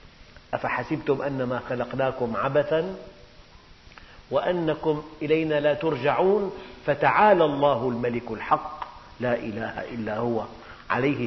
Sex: male